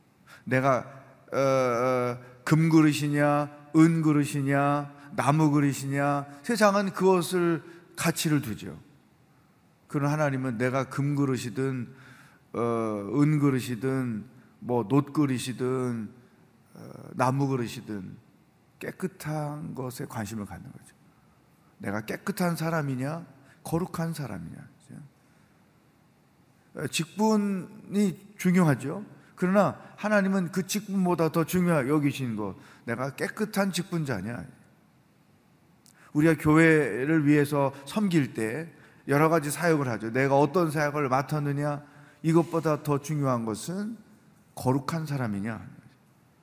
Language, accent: Korean, native